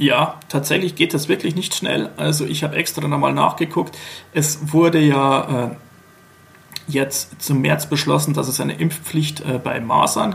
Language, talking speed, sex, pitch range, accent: German, 160 wpm, male, 135-160 Hz, German